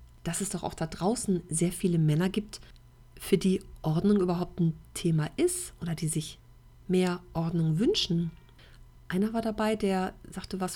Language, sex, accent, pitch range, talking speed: German, female, German, 160-195 Hz, 160 wpm